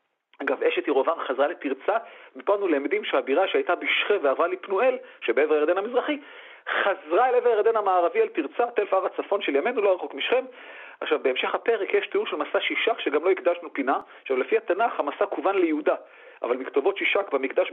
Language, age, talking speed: Hebrew, 40-59, 180 wpm